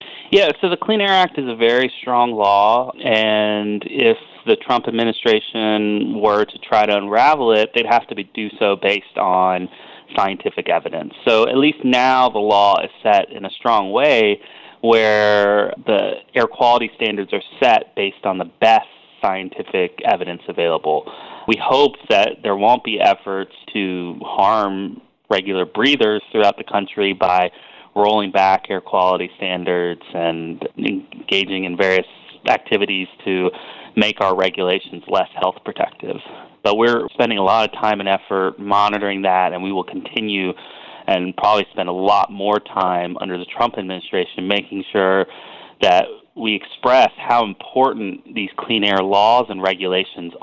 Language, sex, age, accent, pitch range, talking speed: English, male, 30-49, American, 95-120 Hz, 150 wpm